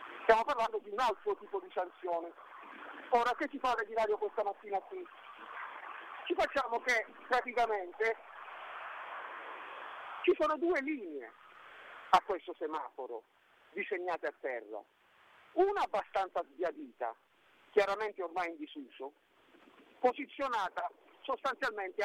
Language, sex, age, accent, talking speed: Italian, male, 50-69, native, 110 wpm